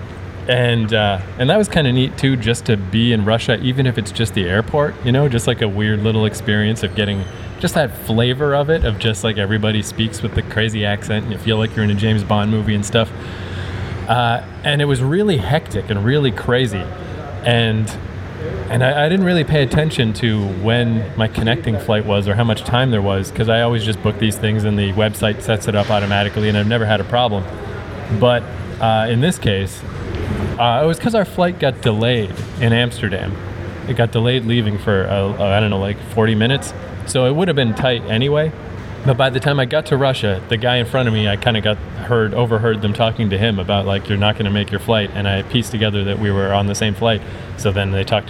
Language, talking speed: English, 230 wpm